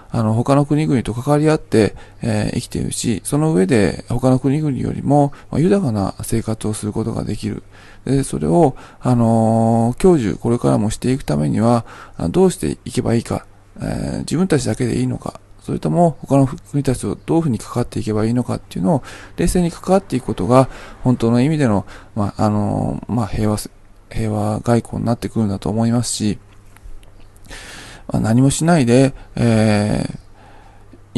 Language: Japanese